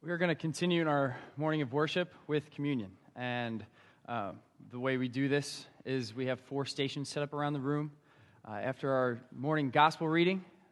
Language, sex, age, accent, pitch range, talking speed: English, male, 20-39, American, 130-155 Hz, 195 wpm